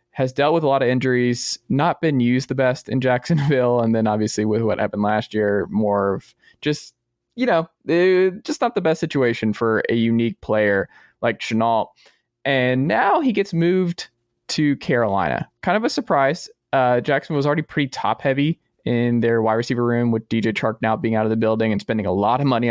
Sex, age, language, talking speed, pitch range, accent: male, 20-39, English, 200 wpm, 110-155 Hz, American